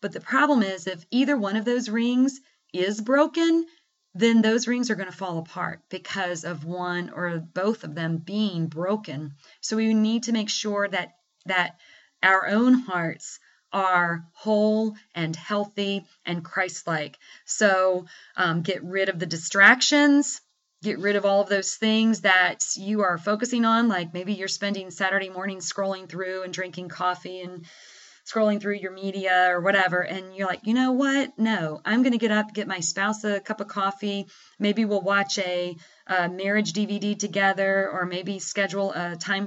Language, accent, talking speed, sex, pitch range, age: English, American, 175 wpm, female, 180-220 Hz, 30-49